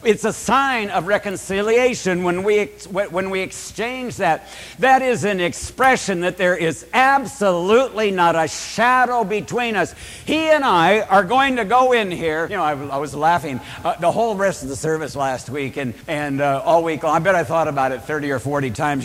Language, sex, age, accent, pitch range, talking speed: English, male, 60-79, American, 140-215 Hz, 200 wpm